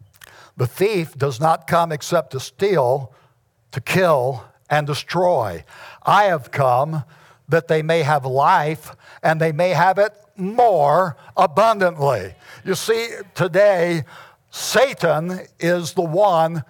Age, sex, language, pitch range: 60-79, male, English, 145-200 Hz